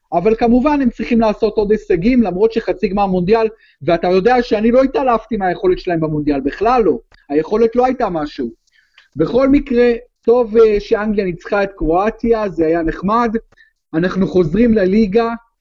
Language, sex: Hebrew, male